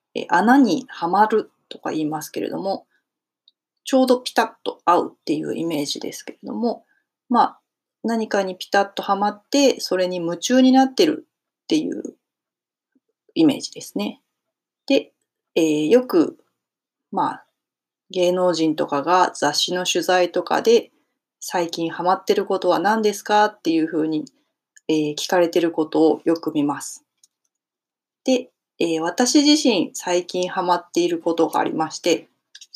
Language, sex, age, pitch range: Japanese, female, 30-49, 165-255 Hz